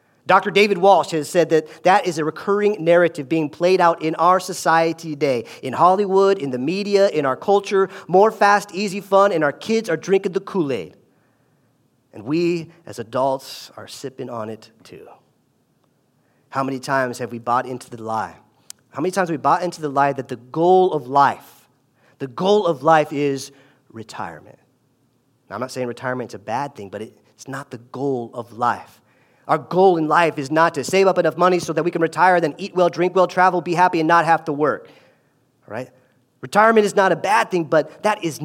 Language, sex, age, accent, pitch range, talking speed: English, male, 40-59, American, 130-180 Hz, 200 wpm